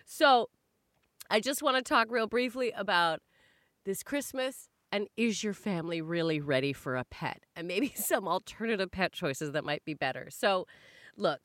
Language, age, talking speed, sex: English, 30-49, 170 wpm, female